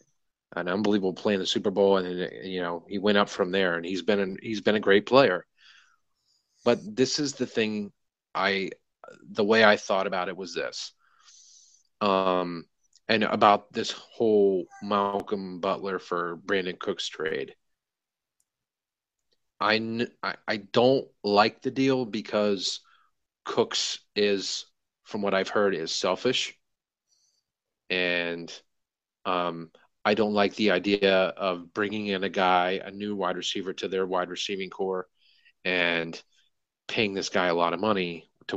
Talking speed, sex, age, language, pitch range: 145 wpm, male, 30-49, English, 95-115 Hz